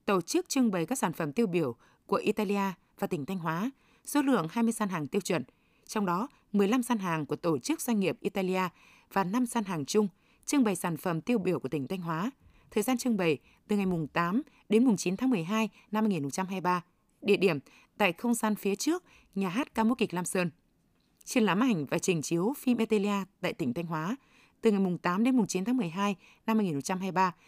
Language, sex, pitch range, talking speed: Vietnamese, female, 185-235 Hz, 215 wpm